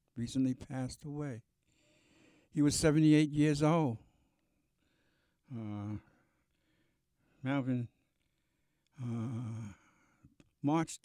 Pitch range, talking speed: 110-145 Hz, 65 wpm